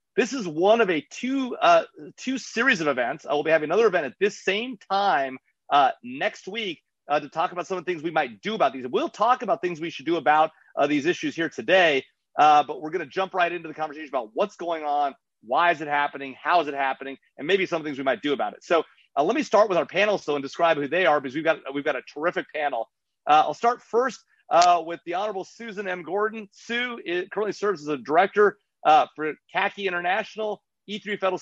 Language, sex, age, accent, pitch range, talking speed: English, male, 30-49, American, 150-210 Hz, 245 wpm